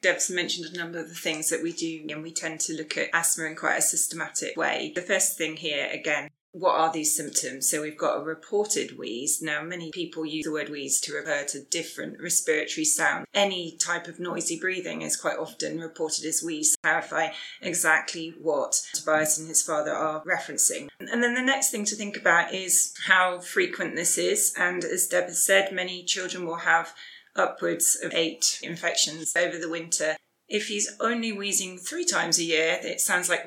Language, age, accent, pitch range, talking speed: English, 20-39, British, 165-195 Hz, 200 wpm